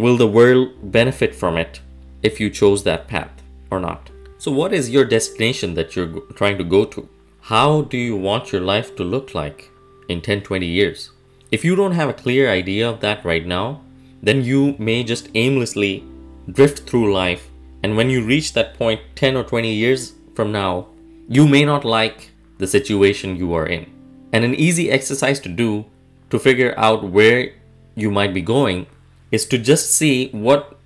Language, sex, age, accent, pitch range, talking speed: English, male, 20-39, Indian, 100-130 Hz, 185 wpm